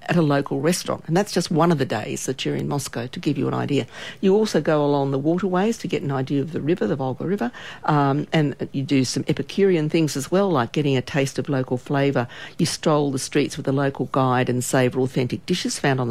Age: 50-69